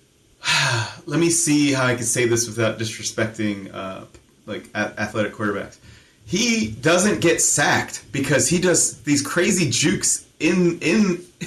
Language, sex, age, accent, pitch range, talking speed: English, male, 30-49, American, 130-170 Hz, 135 wpm